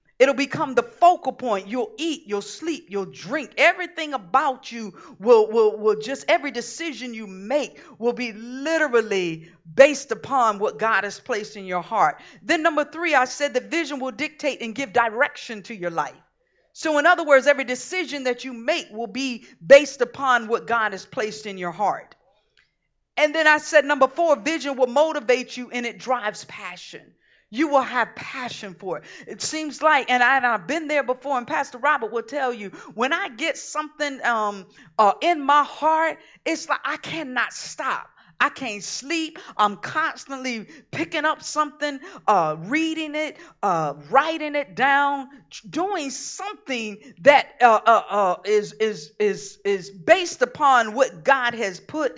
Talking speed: 170 wpm